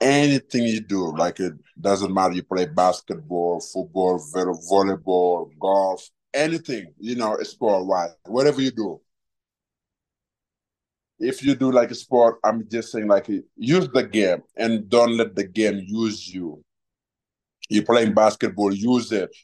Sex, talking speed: male, 150 wpm